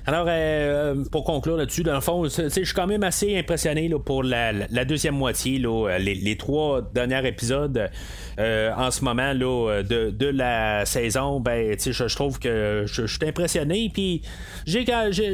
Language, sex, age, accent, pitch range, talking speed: French, male, 30-49, Canadian, 125-180 Hz, 175 wpm